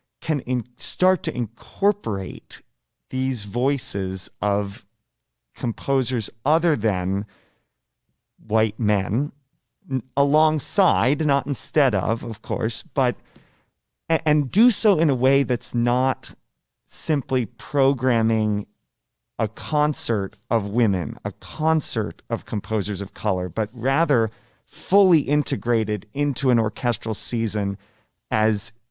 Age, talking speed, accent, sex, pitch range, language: 40-59, 100 wpm, American, male, 110-140 Hz, English